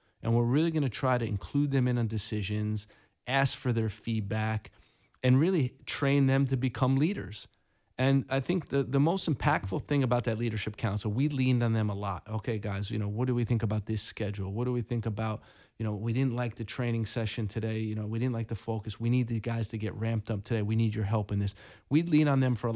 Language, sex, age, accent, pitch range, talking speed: English, male, 30-49, American, 105-125 Hz, 250 wpm